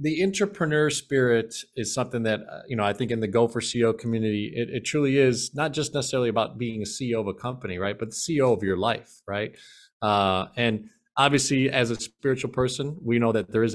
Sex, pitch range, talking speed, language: male, 105-125 Hz, 215 wpm, English